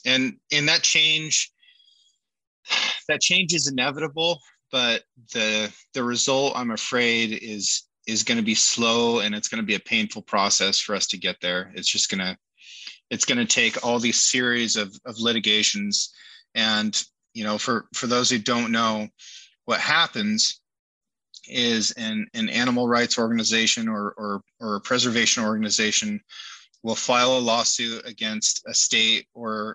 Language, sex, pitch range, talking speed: English, male, 110-130 Hz, 150 wpm